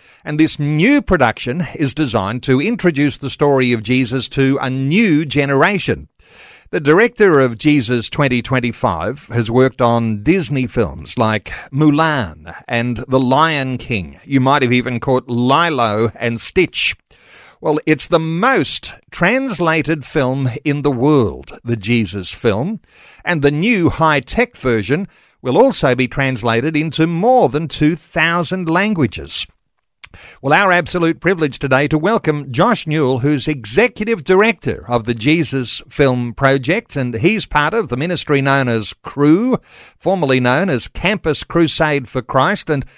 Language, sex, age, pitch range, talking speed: English, male, 50-69, 125-160 Hz, 140 wpm